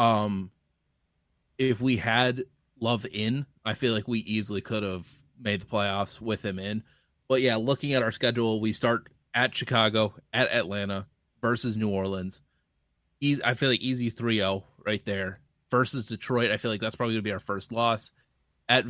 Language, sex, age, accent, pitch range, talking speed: English, male, 20-39, American, 100-120 Hz, 180 wpm